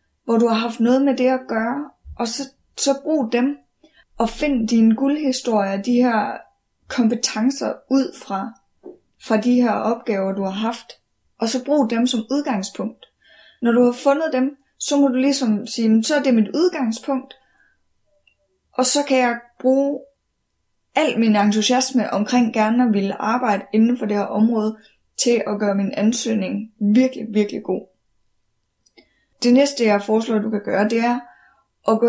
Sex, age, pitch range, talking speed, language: female, 20-39, 220-265 Hz, 165 wpm, Danish